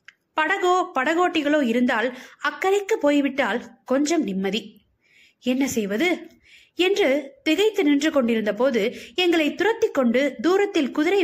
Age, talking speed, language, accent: 20-39, 100 wpm, Tamil, native